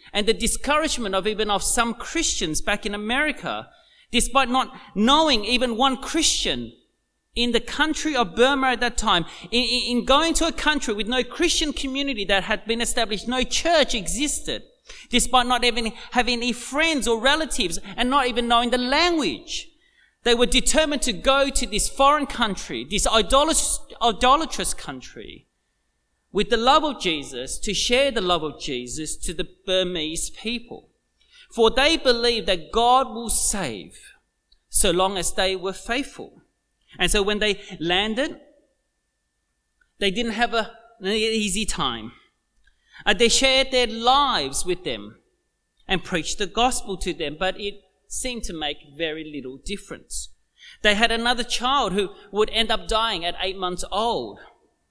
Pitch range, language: 195-270 Hz, English